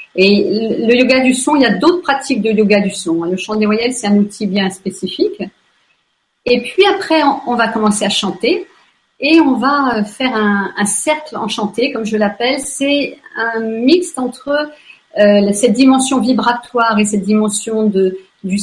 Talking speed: 175 wpm